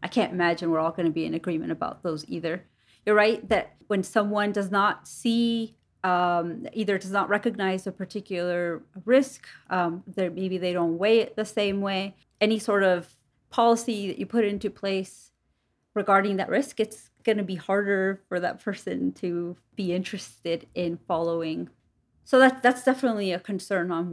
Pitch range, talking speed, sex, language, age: 175-215 Hz, 175 wpm, female, English, 30-49